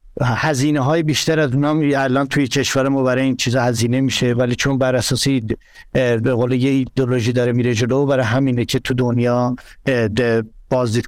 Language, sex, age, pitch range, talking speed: Persian, male, 60-79, 125-145 Hz, 150 wpm